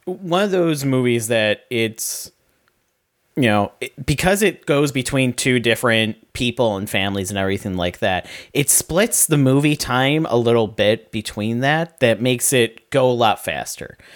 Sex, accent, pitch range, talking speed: male, American, 115-135 Hz, 165 wpm